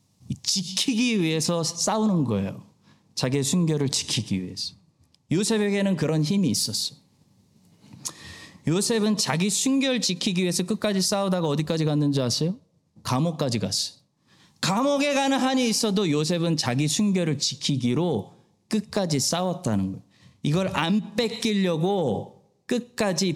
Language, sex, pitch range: Korean, male, 125-205 Hz